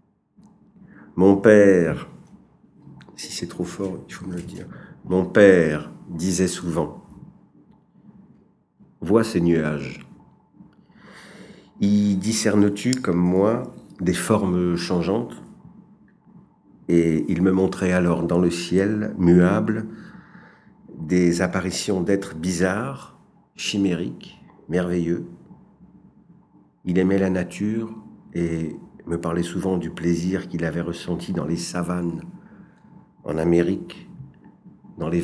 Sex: male